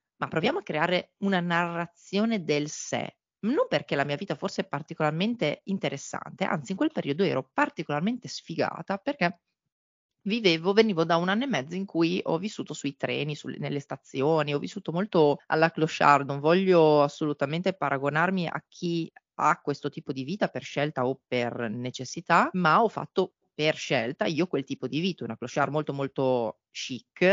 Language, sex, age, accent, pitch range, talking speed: Italian, female, 30-49, native, 140-185 Hz, 165 wpm